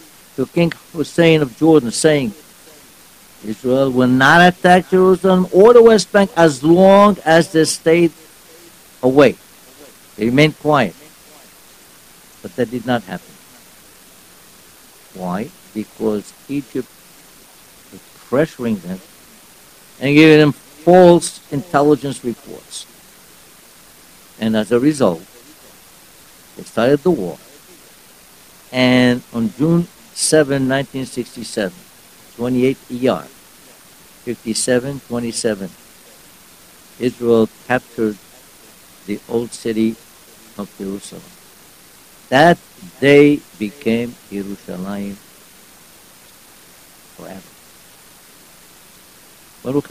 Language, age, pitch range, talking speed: English, 60-79, 115-150 Hz, 85 wpm